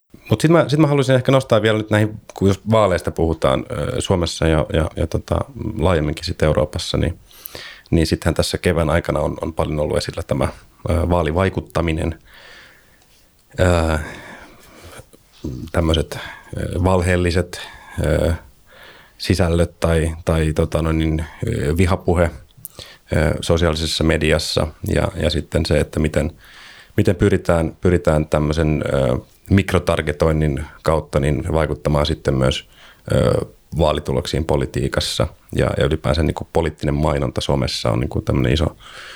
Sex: male